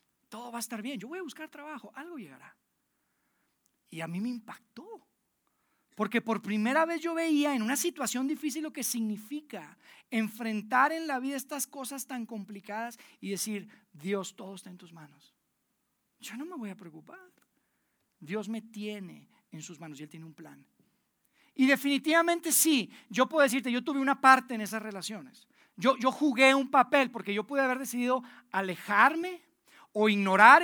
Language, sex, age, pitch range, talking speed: Spanish, male, 40-59, 210-275 Hz, 175 wpm